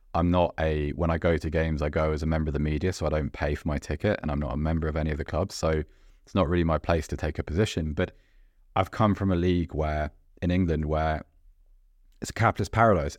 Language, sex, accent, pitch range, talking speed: English, male, British, 80-100 Hz, 260 wpm